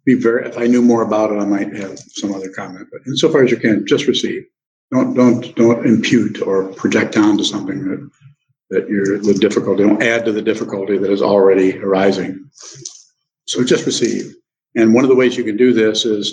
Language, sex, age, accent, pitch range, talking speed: English, male, 60-79, American, 100-120 Hz, 205 wpm